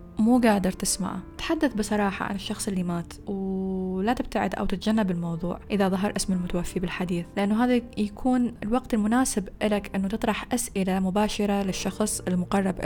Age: 10-29